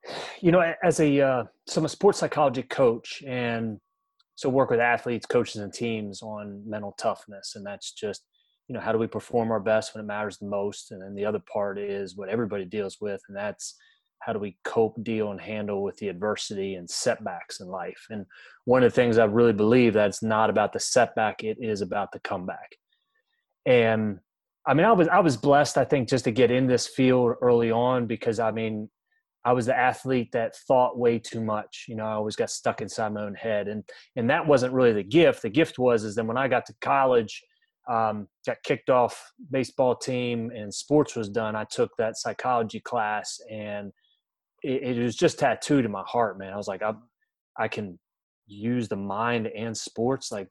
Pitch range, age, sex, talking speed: 105-130 Hz, 30-49, male, 210 wpm